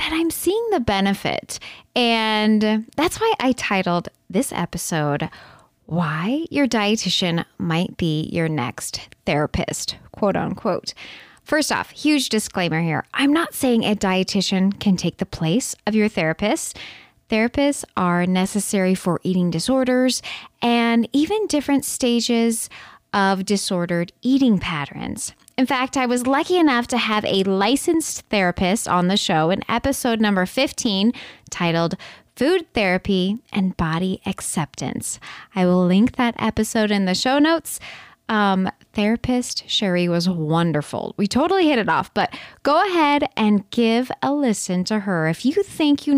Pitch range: 185-255 Hz